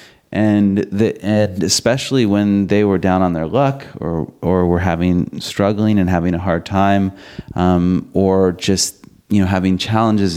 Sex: male